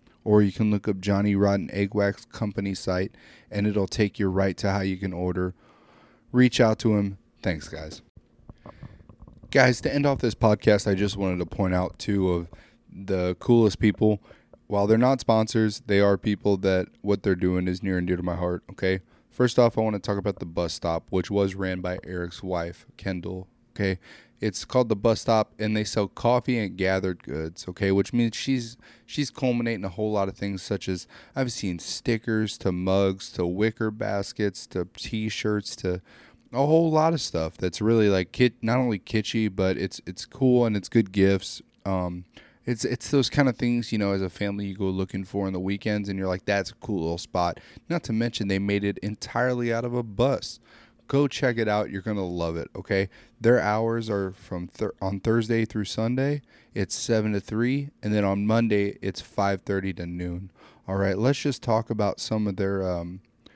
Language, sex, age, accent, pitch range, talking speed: English, male, 20-39, American, 95-115 Hz, 205 wpm